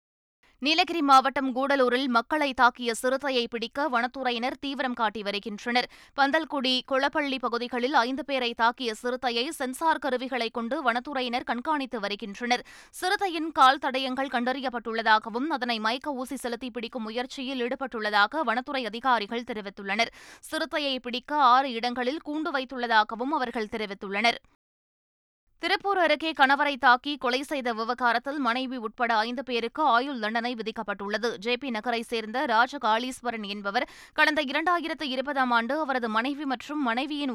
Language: Tamil